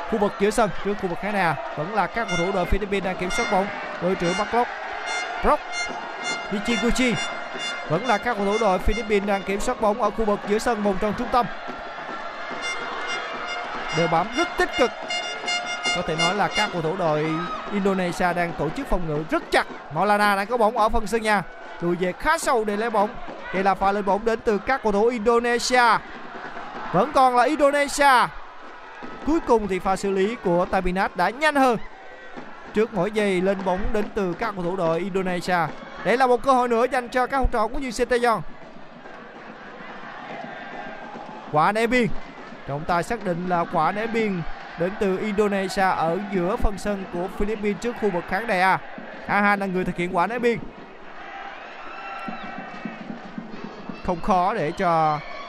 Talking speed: 185 wpm